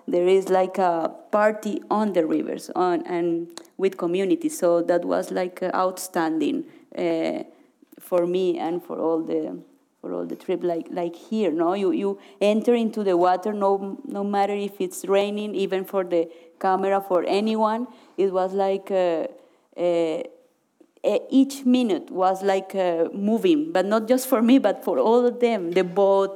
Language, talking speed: German, 165 wpm